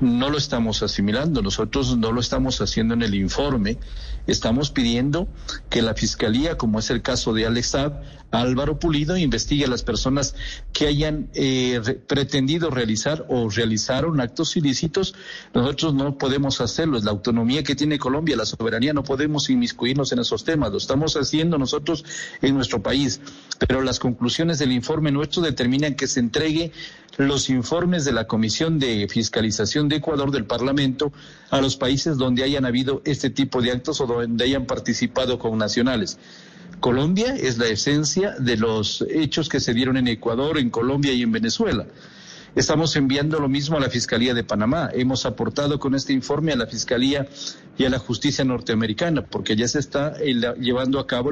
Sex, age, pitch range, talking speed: male, 50-69, 120-150 Hz, 170 wpm